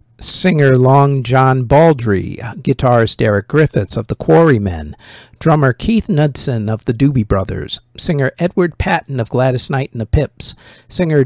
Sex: male